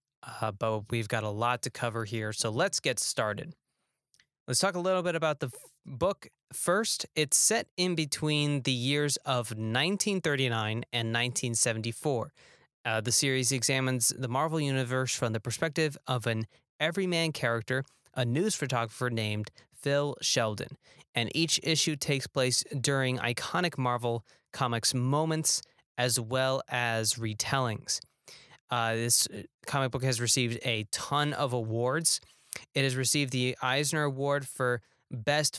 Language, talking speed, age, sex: English, 140 wpm, 20-39, male